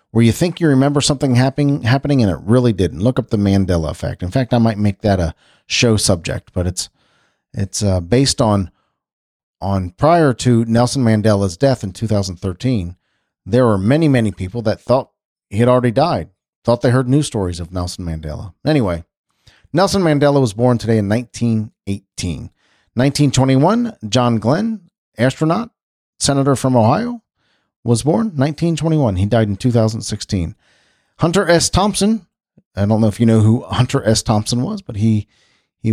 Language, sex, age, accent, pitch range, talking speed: English, male, 40-59, American, 105-140 Hz, 165 wpm